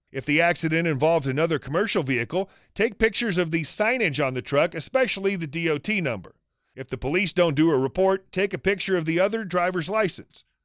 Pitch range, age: 160-210 Hz, 40-59